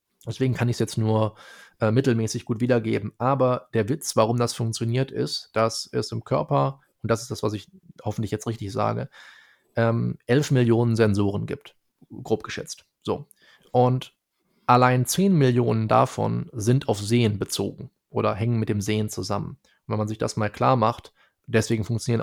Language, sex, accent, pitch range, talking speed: German, male, German, 110-125 Hz, 165 wpm